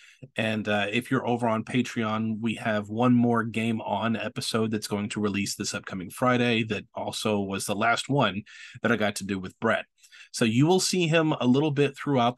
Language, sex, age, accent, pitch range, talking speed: English, male, 30-49, American, 110-130 Hz, 210 wpm